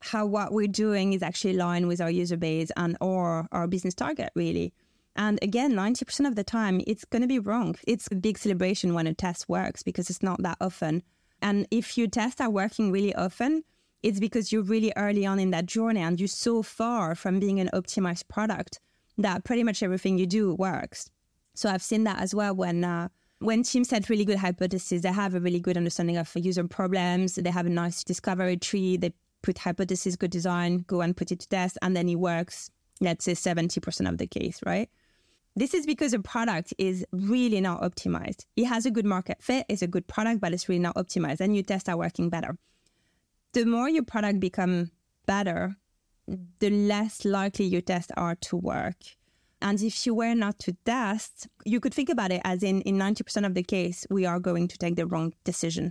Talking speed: 210 wpm